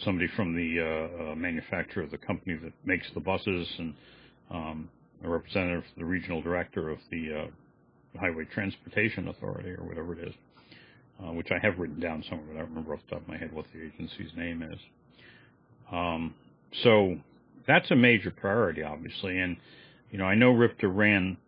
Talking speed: 185 wpm